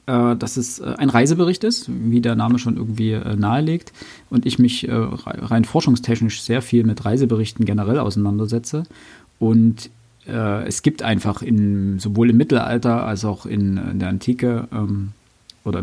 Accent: German